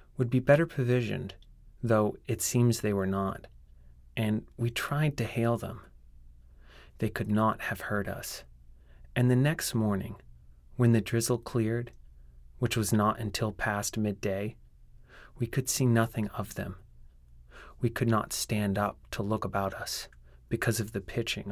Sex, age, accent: male, 30-49, American